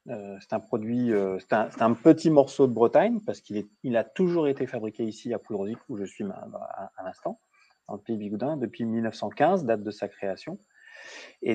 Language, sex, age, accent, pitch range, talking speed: French, male, 30-49, French, 110-140 Hz, 220 wpm